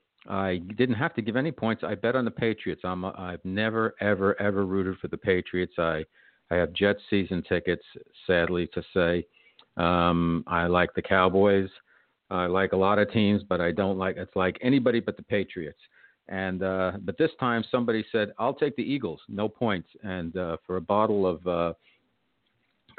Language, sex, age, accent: English, male, 50-69, American